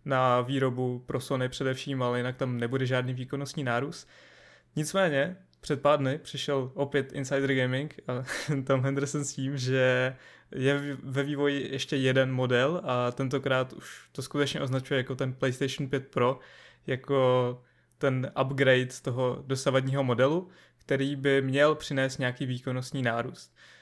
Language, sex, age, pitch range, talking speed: Czech, male, 20-39, 130-140 Hz, 145 wpm